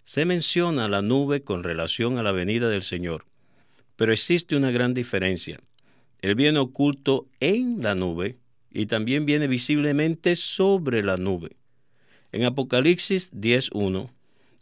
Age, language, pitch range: 50-69, Spanish, 100-140 Hz